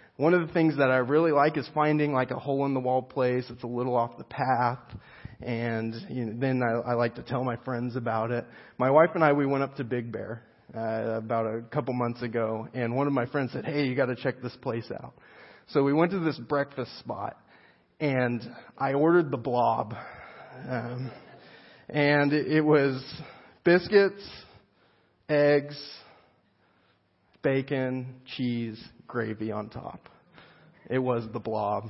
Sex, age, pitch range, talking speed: male, 30-49, 120-155 Hz, 165 wpm